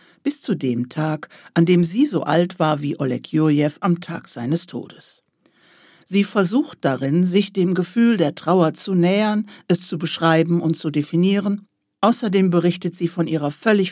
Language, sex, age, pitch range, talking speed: German, female, 60-79, 150-190 Hz, 170 wpm